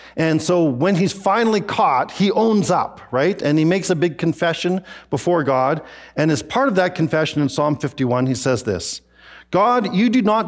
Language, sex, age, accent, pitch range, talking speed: English, male, 40-59, American, 130-195 Hz, 195 wpm